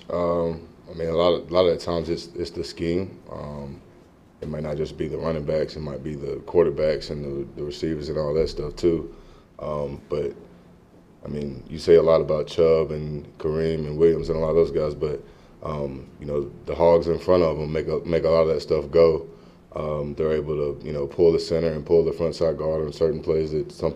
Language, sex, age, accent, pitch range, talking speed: English, male, 20-39, American, 75-85 Hz, 245 wpm